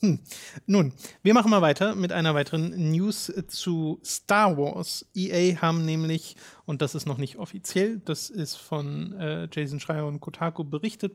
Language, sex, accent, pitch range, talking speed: German, male, German, 155-180 Hz, 165 wpm